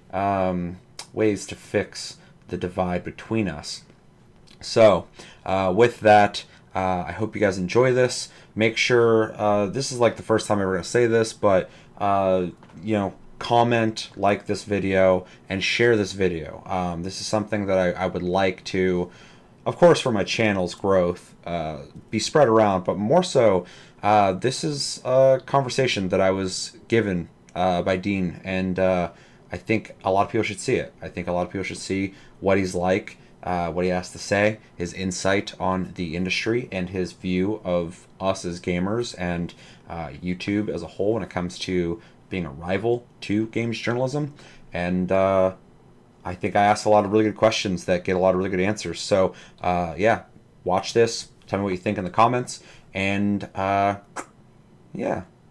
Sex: male